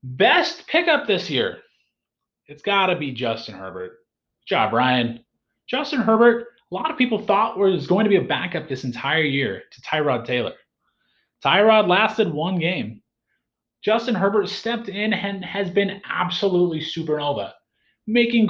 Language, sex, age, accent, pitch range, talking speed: English, male, 30-49, American, 140-225 Hz, 150 wpm